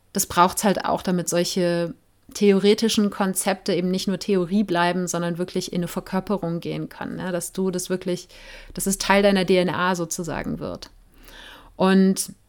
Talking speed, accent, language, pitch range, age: 170 wpm, German, German, 185-210 Hz, 30-49